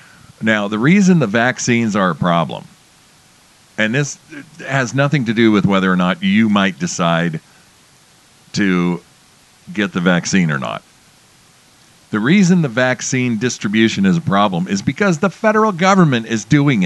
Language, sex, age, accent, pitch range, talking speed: English, male, 50-69, American, 110-170 Hz, 150 wpm